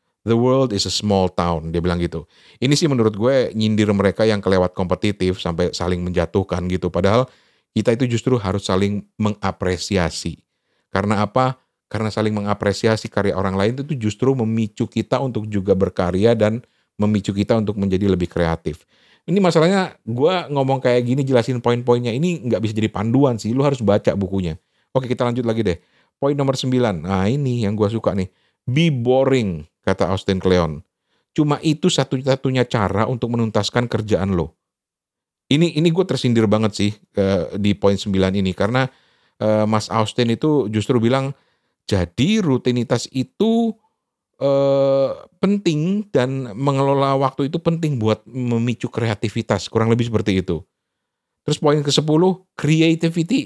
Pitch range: 100-135 Hz